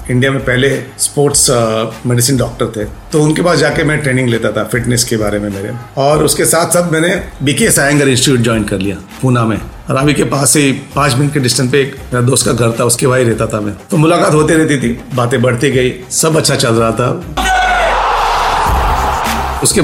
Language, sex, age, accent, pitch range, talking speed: Hindi, male, 40-59, native, 115-140 Hz, 200 wpm